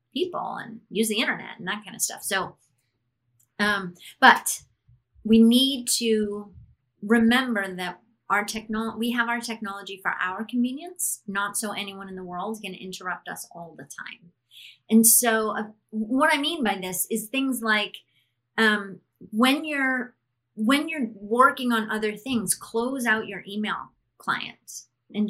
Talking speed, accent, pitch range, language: 160 wpm, American, 195-240 Hz, English